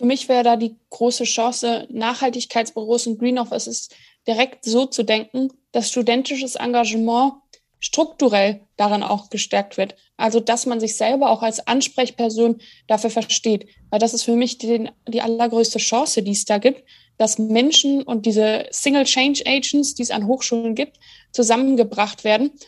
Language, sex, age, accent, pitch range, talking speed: German, female, 20-39, German, 225-265 Hz, 155 wpm